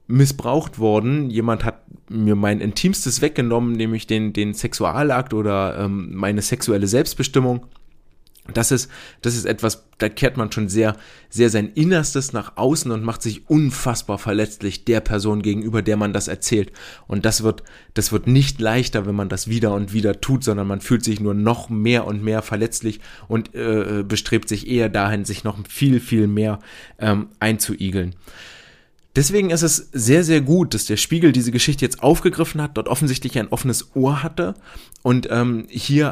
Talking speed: 175 wpm